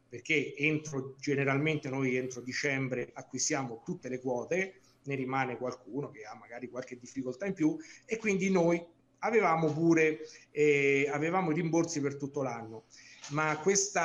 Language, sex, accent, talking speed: Italian, male, native, 145 wpm